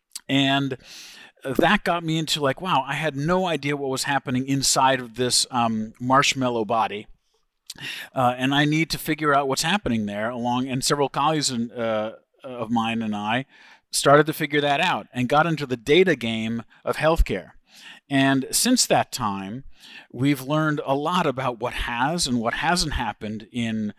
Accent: American